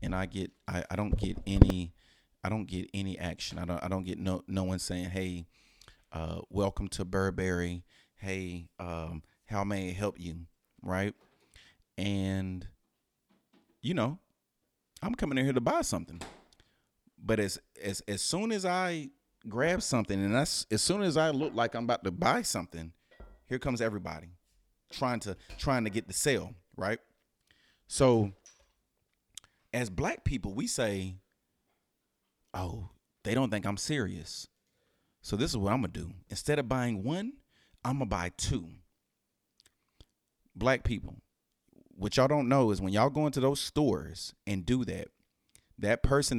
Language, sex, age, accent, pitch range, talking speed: English, male, 30-49, American, 90-125 Hz, 160 wpm